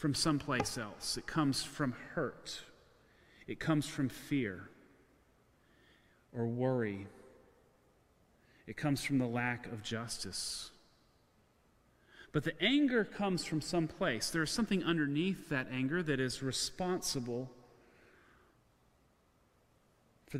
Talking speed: 105 wpm